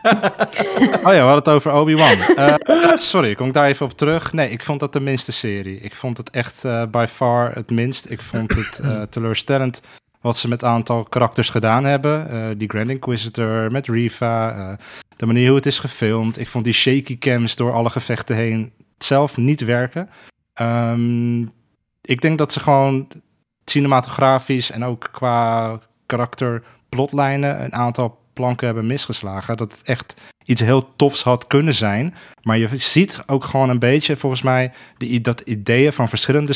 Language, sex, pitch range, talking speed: Dutch, male, 115-135 Hz, 180 wpm